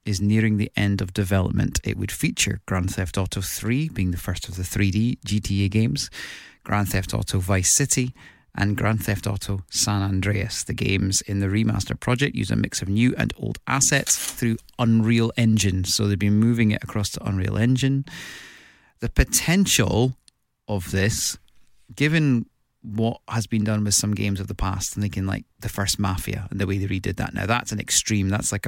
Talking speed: 190 wpm